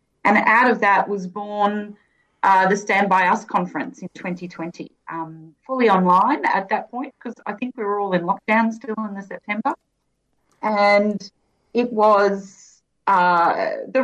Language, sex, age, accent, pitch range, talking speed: English, female, 30-49, Australian, 180-230 Hz, 160 wpm